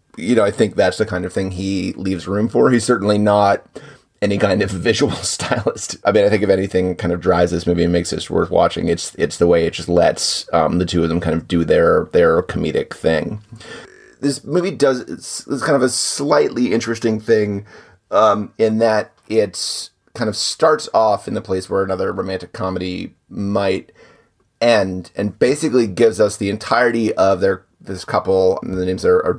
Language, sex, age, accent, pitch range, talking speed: English, male, 30-49, American, 90-115 Hz, 200 wpm